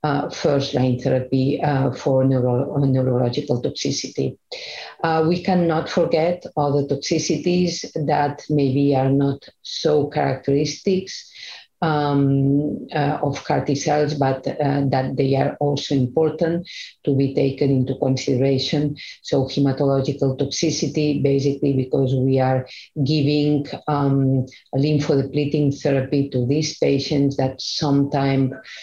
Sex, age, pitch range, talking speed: female, 50-69, 135-150 Hz, 115 wpm